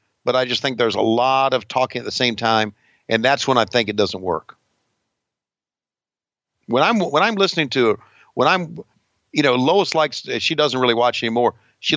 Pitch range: 110-140 Hz